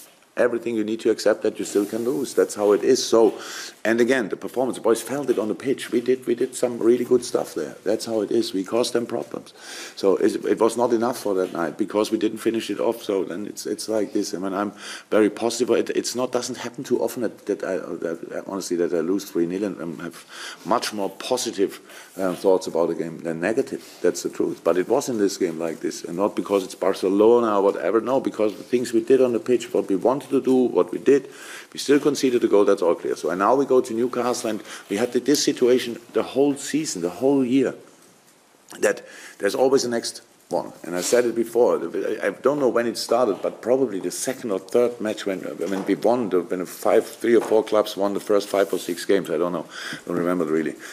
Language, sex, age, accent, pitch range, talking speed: English, male, 50-69, German, 100-135 Hz, 245 wpm